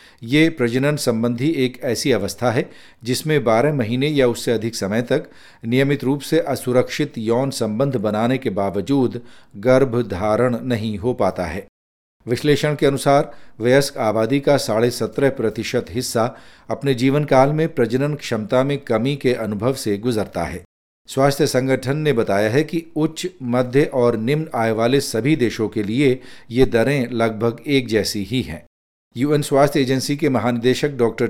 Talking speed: 155 wpm